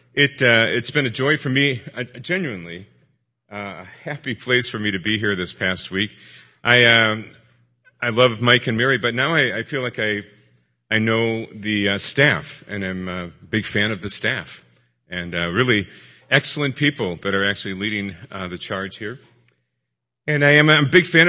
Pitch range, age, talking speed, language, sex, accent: 100-140 Hz, 40-59, 200 wpm, English, male, American